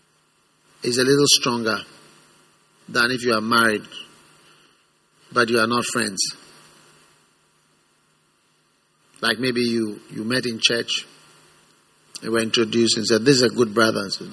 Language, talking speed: English, 140 wpm